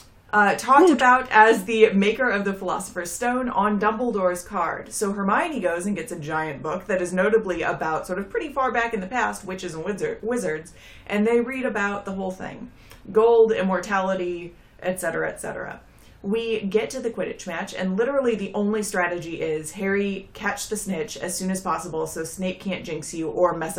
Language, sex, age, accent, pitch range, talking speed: English, female, 30-49, American, 180-235 Hz, 185 wpm